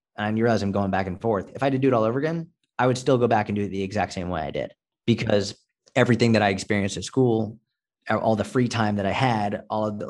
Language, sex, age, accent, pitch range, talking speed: English, male, 30-49, American, 100-120 Hz, 280 wpm